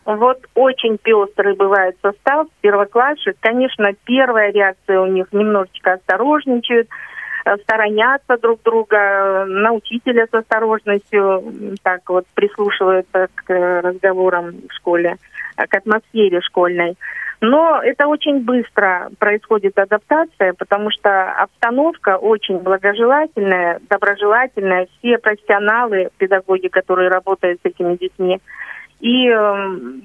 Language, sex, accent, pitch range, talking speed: Russian, female, native, 190-230 Hz, 105 wpm